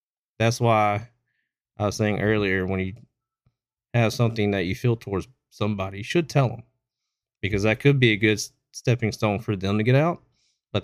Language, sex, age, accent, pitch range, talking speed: English, male, 30-49, American, 100-120 Hz, 185 wpm